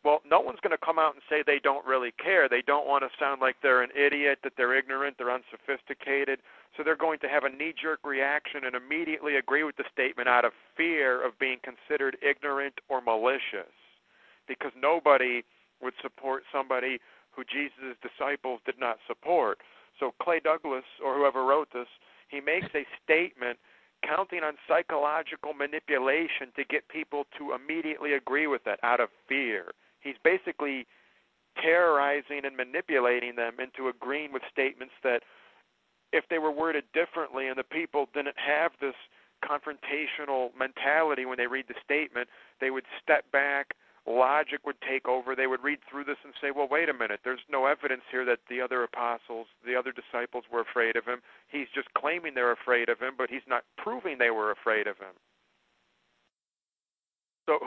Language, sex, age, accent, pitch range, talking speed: English, male, 50-69, American, 125-150 Hz, 175 wpm